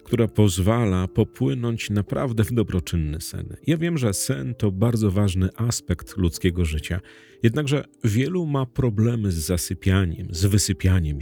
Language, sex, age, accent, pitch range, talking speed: Polish, male, 40-59, native, 95-125 Hz, 135 wpm